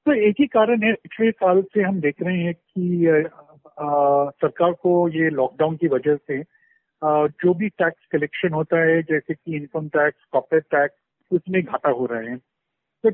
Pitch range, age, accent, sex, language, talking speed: 155-200 Hz, 50-69, native, male, Hindi, 185 wpm